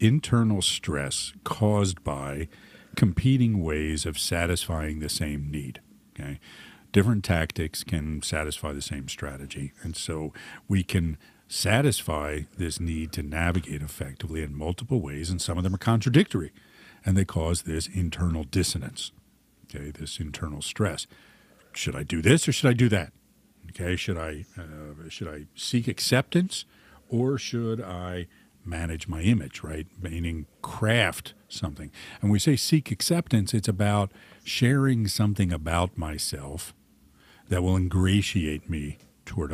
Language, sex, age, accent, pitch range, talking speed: English, male, 50-69, American, 80-105 Hz, 140 wpm